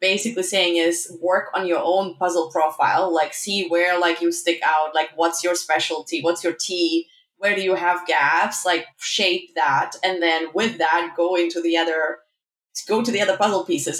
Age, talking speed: 20-39, 195 wpm